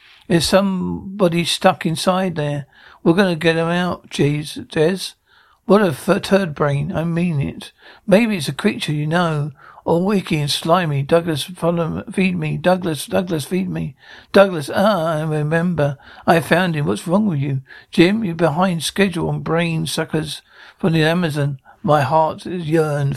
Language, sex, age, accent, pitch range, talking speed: English, male, 60-79, British, 155-190 Hz, 165 wpm